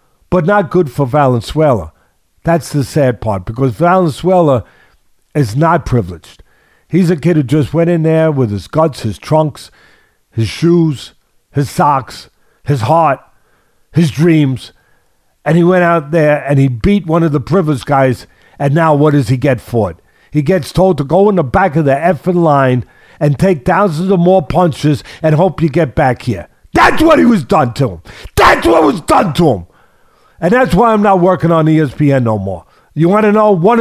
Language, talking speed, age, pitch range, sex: English, 190 wpm, 50-69, 120-175 Hz, male